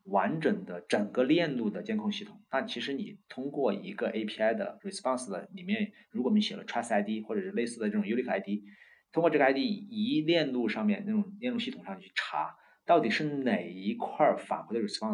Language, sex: Chinese, male